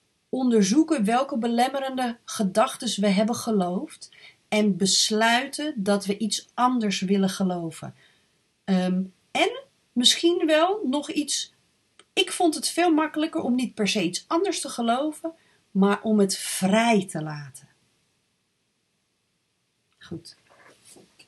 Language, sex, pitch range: Dutch, female, 195-270 Hz